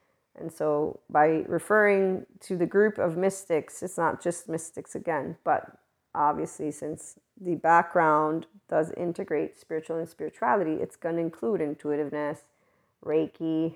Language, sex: English, female